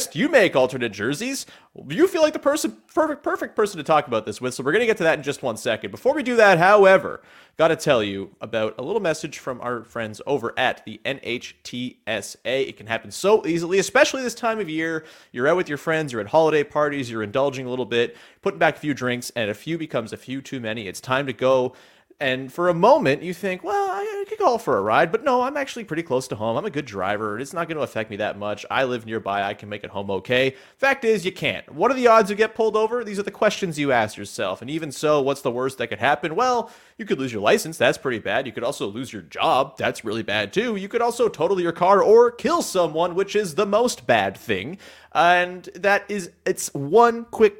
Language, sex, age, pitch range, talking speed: English, male, 30-49, 125-195 Hz, 250 wpm